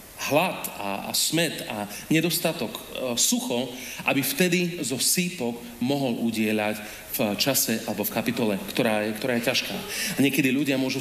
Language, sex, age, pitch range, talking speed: Slovak, male, 40-59, 125-175 Hz, 140 wpm